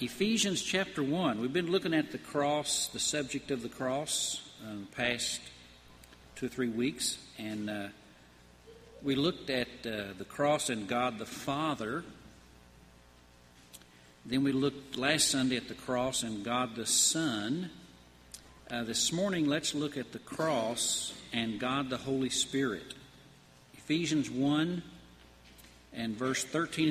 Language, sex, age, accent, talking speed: English, male, 50-69, American, 140 wpm